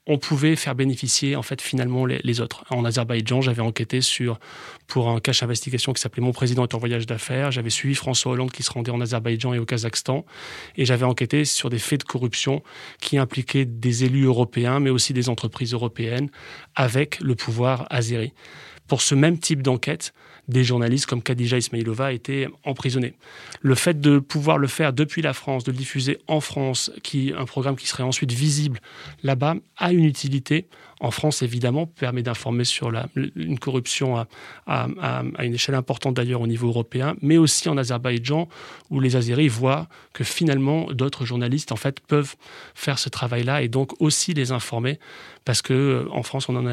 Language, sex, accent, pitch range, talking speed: French, male, French, 120-145 Hz, 185 wpm